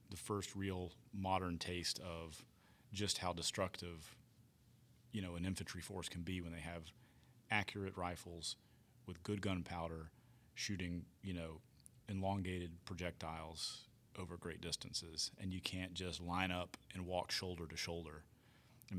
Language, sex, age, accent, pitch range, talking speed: English, male, 40-59, American, 85-110 Hz, 140 wpm